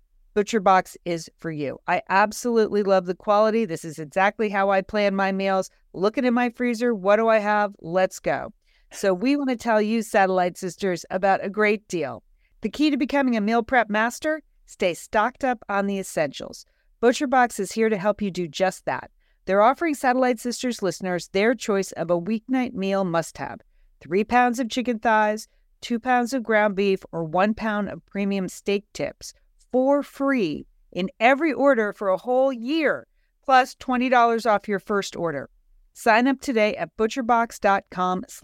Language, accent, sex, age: English, American, female, 40-59